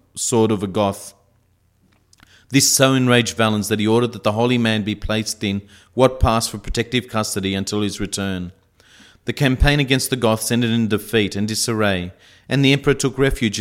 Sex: male